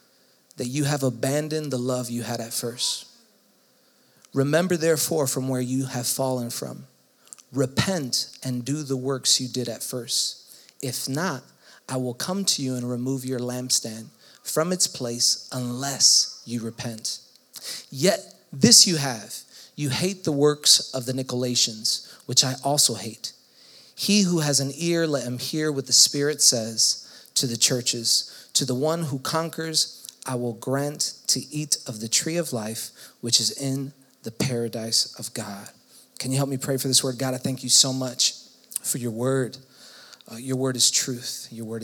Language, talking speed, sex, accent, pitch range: English, 170 wpm, male, American, 120-145 Hz